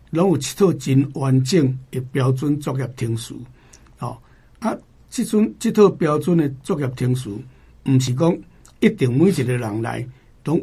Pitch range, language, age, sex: 125-150 Hz, Chinese, 60-79, male